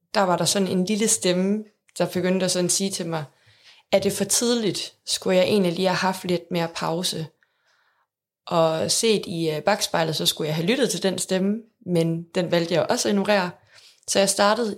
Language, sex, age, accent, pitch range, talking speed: Danish, female, 20-39, native, 170-200 Hz, 205 wpm